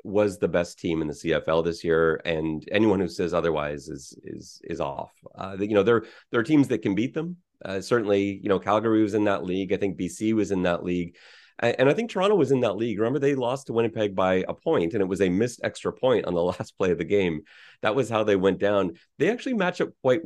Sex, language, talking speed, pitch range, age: male, English, 250 wpm, 90-125 Hz, 30-49